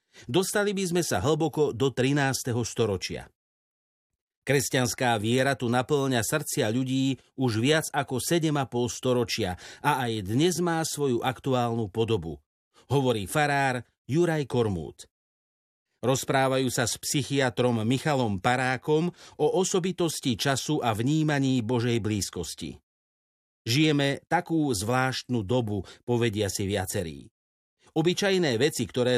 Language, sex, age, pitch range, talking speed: Slovak, male, 50-69, 115-145 Hz, 110 wpm